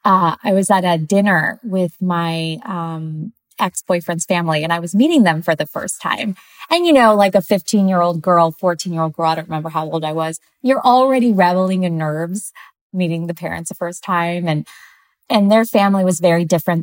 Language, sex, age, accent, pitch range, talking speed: English, female, 20-39, American, 165-200 Hz, 195 wpm